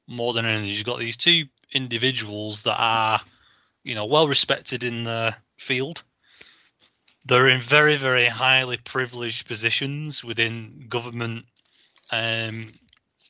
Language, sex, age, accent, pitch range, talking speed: English, male, 30-49, British, 115-135 Hz, 115 wpm